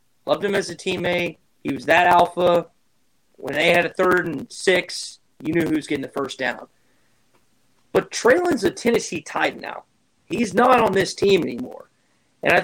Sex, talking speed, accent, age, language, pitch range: male, 180 wpm, American, 30-49, English, 155-210 Hz